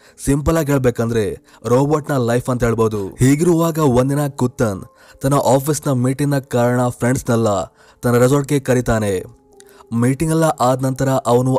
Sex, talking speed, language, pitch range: male, 120 wpm, Kannada, 120-145 Hz